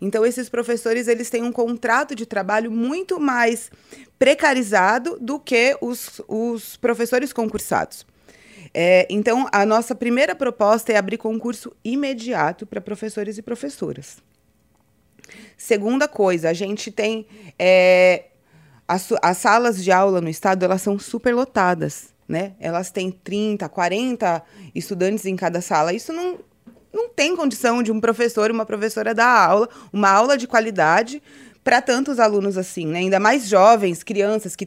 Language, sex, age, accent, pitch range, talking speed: English, female, 20-39, Brazilian, 185-235 Hz, 145 wpm